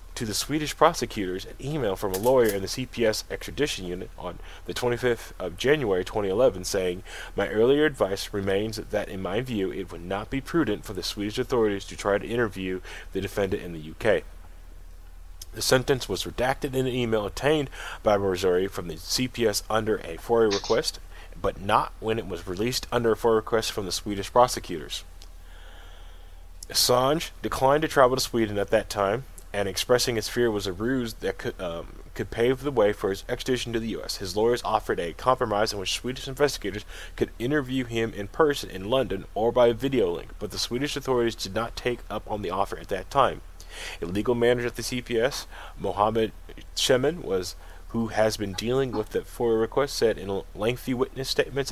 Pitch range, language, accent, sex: 95-120 Hz, English, American, male